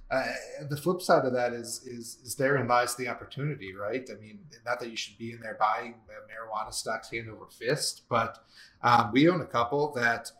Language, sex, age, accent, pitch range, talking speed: English, male, 30-49, American, 110-125 Hz, 215 wpm